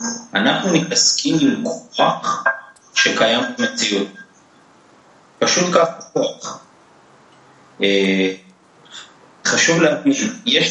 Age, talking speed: 30-49, 60 wpm